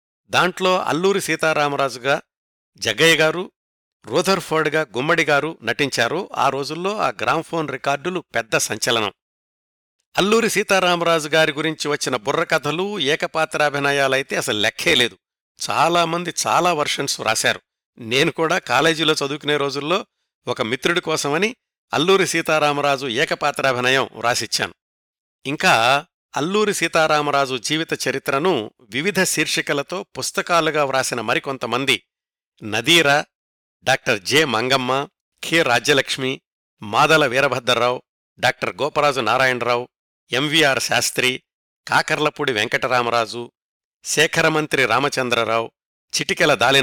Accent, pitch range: native, 130-165 Hz